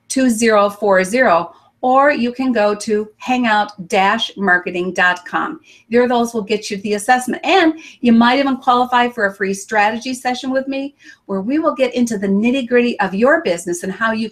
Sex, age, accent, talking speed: female, 50-69, American, 165 wpm